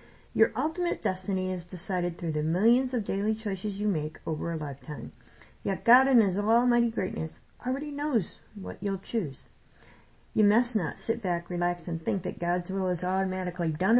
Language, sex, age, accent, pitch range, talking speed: English, female, 50-69, American, 170-225 Hz, 175 wpm